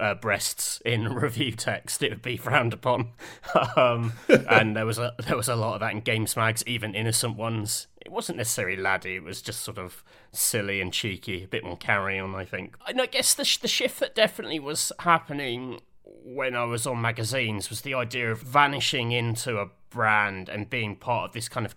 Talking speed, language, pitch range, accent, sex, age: 210 wpm, English, 105-125 Hz, British, male, 30-49